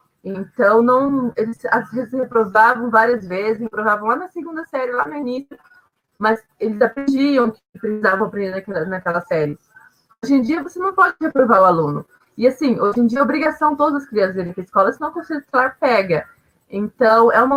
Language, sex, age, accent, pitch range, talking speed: Portuguese, female, 20-39, Brazilian, 205-260 Hz, 200 wpm